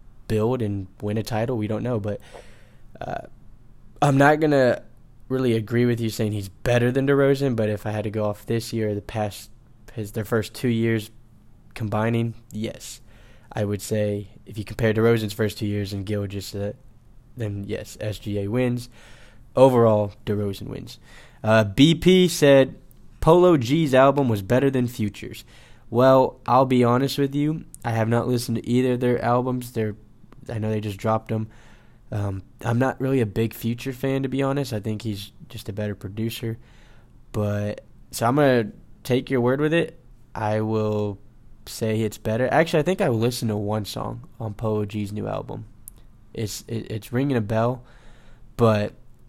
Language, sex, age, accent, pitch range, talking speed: English, male, 10-29, American, 110-125 Hz, 180 wpm